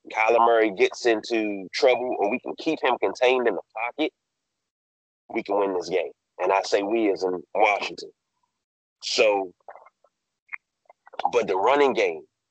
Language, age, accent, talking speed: English, 30-49, American, 150 wpm